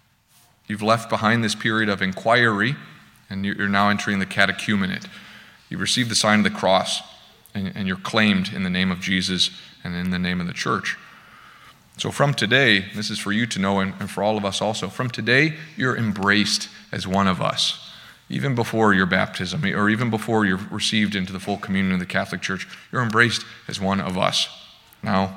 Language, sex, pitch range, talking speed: English, male, 100-125 Hz, 195 wpm